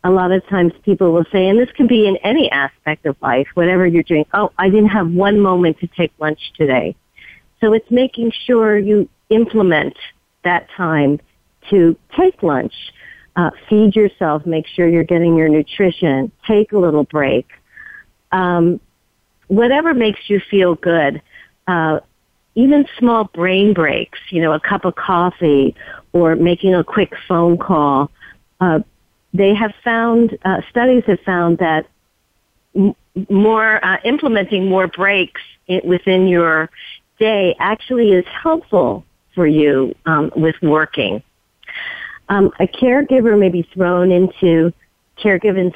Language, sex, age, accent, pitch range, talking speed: English, female, 50-69, American, 170-210 Hz, 145 wpm